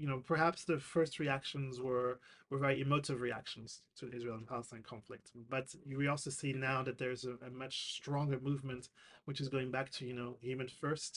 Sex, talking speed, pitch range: male, 205 wpm, 130-145 Hz